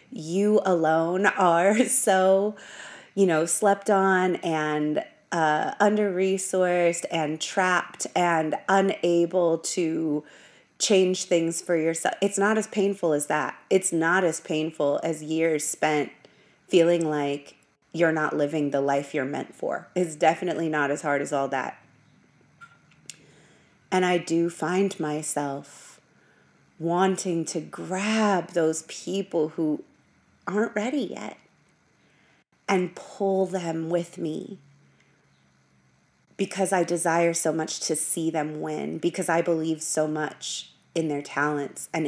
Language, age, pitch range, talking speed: English, 30-49, 150-185 Hz, 125 wpm